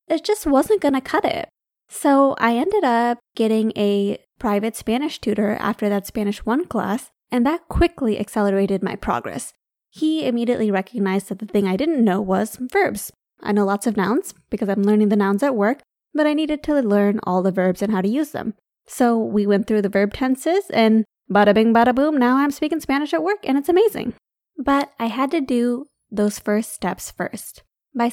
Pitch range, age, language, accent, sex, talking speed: 205-275 Hz, 20-39, English, American, female, 200 wpm